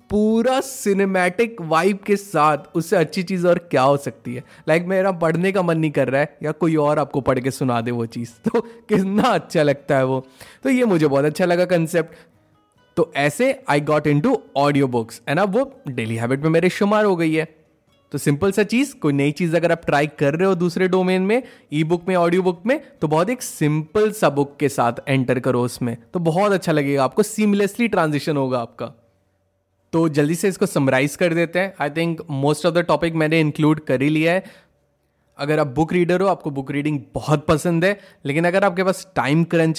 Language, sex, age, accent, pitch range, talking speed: Hindi, male, 20-39, native, 145-185 Hz, 215 wpm